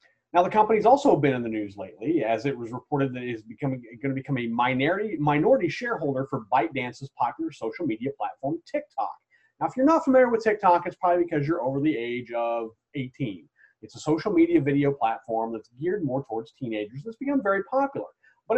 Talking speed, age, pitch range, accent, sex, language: 195 wpm, 30-49, 115-170 Hz, American, male, English